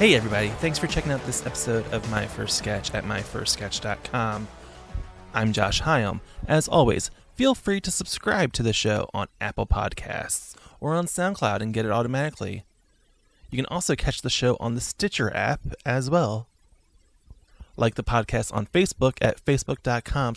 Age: 20-39